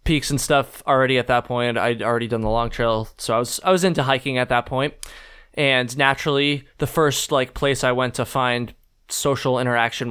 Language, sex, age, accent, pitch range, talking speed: English, male, 20-39, American, 120-150 Hz, 210 wpm